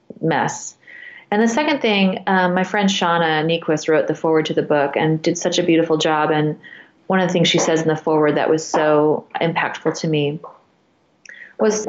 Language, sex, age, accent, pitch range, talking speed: English, female, 30-49, American, 155-185 Hz, 195 wpm